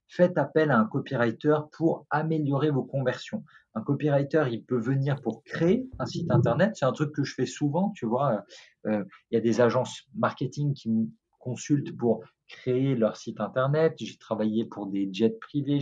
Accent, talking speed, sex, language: French, 185 wpm, male, French